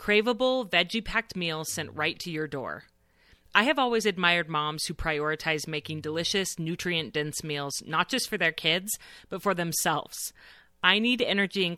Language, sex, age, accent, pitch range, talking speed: English, female, 30-49, American, 155-200 Hz, 160 wpm